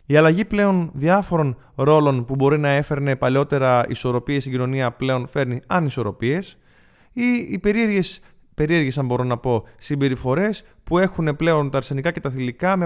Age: 20-39